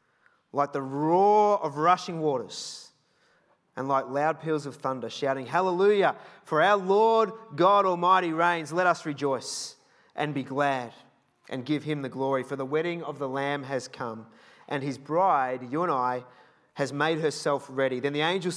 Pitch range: 140-175 Hz